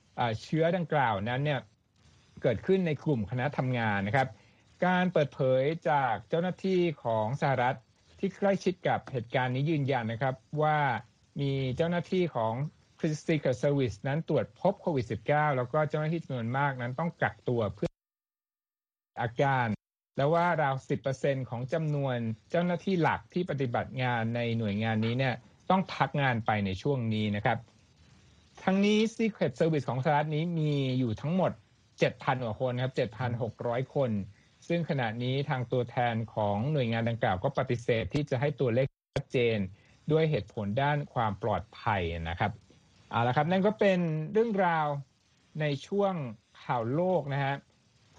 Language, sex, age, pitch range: Thai, male, 60-79, 115-155 Hz